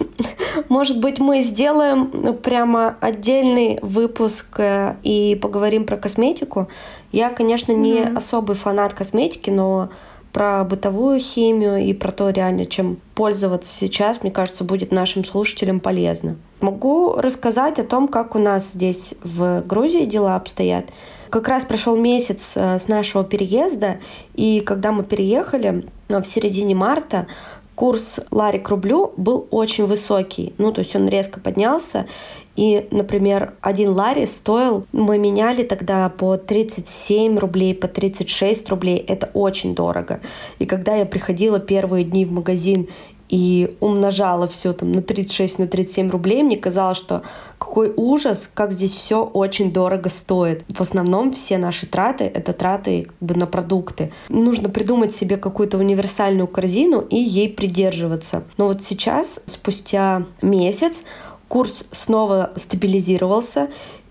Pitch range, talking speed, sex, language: 190-225 Hz, 135 wpm, female, Russian